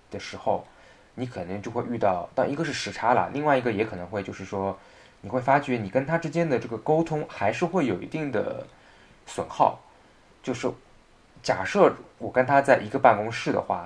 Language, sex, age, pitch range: Chinese, male, 20-39, 95-130 Hz